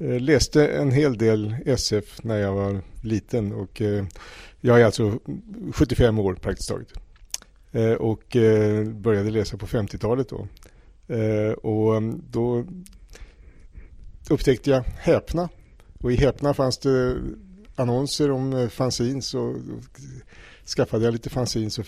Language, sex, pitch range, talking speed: Swedish, male, 105-125 Hz, 115 wpm